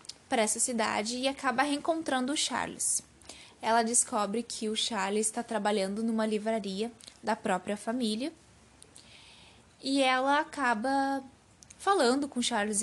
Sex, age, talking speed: female, 10-29, 125 wpm